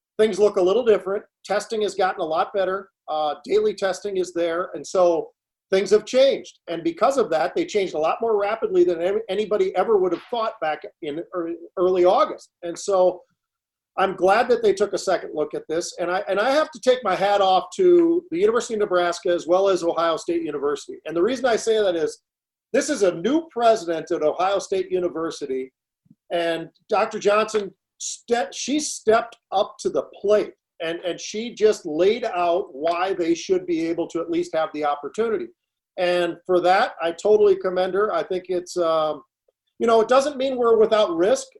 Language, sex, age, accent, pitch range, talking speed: English, male, 40-59, American, 175-230 Hz, 195 wpm